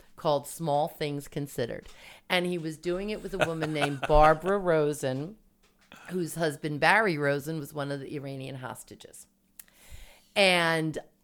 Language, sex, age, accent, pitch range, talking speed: English, female, 40-59, American, 145-195 Hz, 140 wpm